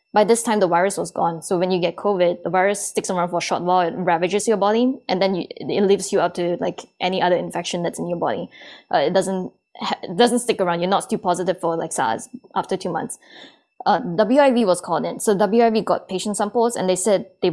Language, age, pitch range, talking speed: English, 10-29, 180-210 Hz, 245 wpm